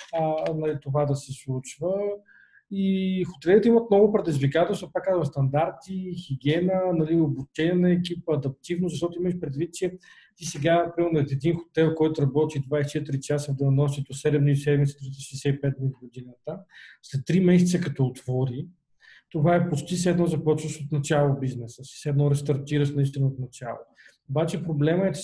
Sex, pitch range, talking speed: male, 140-170 Hz, 155 wpm